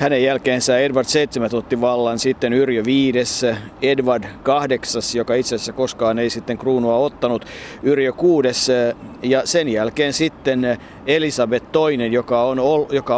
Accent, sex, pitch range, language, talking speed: native, male, 120-140 Hz, Finnish, 135 wpm